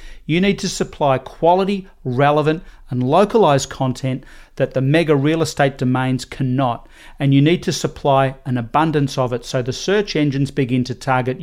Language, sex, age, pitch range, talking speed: English, male, 40-59, 130-155 Hz, 170 wpm